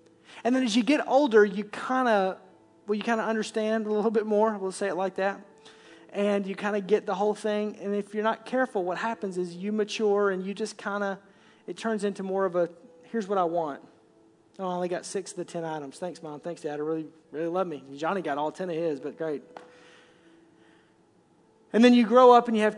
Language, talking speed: English, 235 wpm